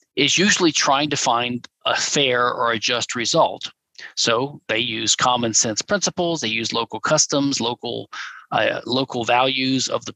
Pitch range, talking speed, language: 120-140 Hz, 160 wpm, English